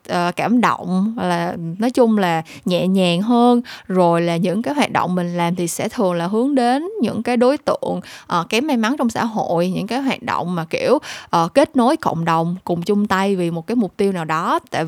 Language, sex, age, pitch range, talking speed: Vietnamese, female, 20-39, 180-245 Hz, 220 wpm